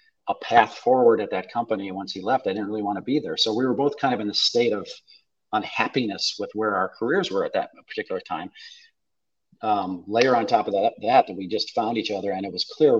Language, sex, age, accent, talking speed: English, male, 40-59, American, 240 wpm